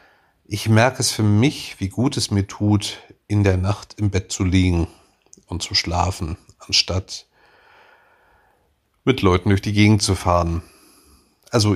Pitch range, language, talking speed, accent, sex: 90-105 Hz, German, 150 wpm, German, male